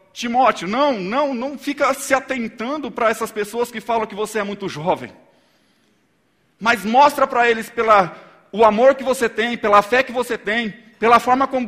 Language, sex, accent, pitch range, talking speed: Portuguese, male, Brazilian, 150-235 Hz, 175 wpm